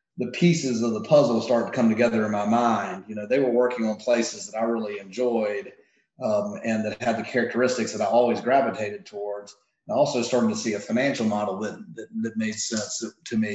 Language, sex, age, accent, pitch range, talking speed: English, male, 30-49, American, 105-125 Hz, 220 wpm